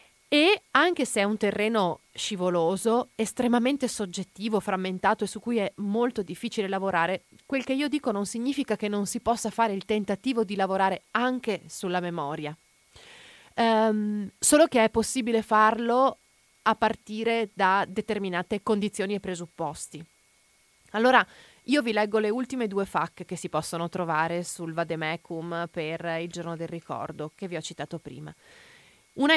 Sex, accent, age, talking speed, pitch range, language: female, native, 30-49, 150 wpm, 175-225 Hz, Italian